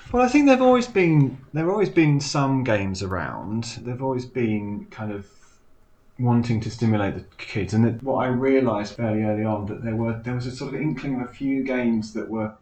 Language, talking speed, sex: English, 210 wpm, male